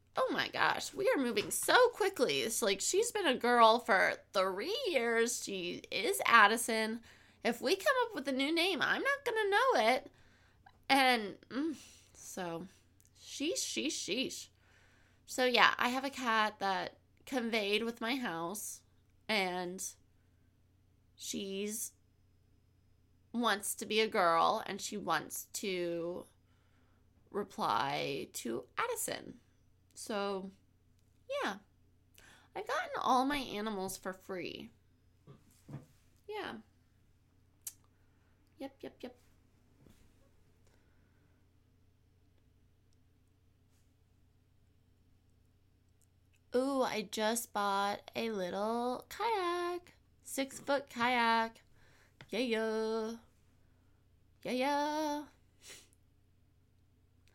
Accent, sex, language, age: American, female, English, 20-39